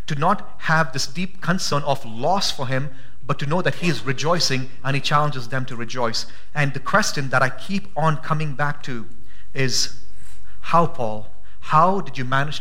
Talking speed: 185 wpm